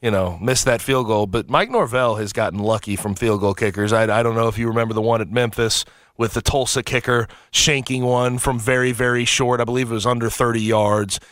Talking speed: 235 wpm